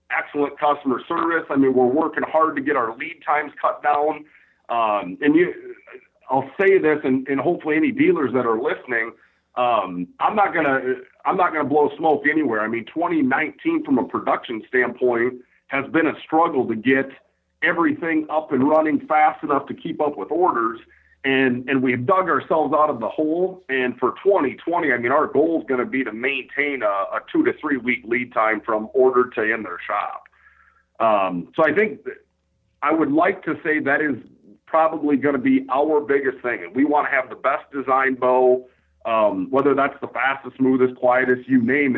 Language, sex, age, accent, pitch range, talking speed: English, male, 40-59, American, 130-165 Hz, 195 wpm